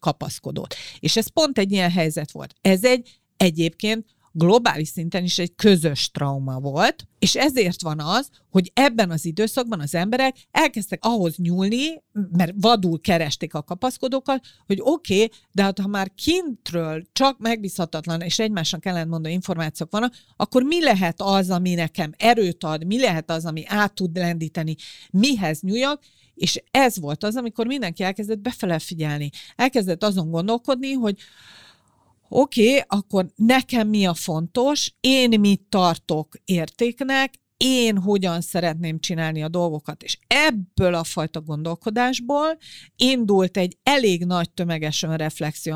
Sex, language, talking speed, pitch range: female, Hungarian, 140 wpm, 165-230 Hz